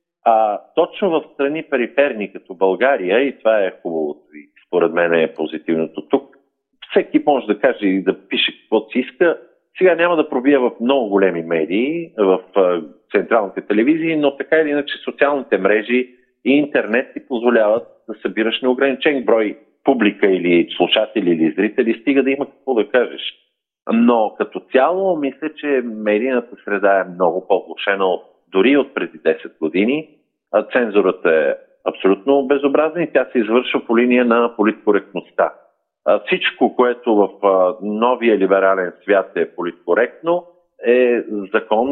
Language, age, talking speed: Bulgarian, 50-69, 145 wpm